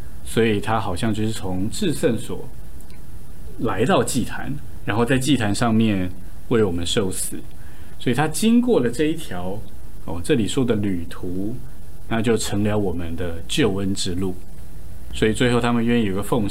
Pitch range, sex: 90-120 Hz, male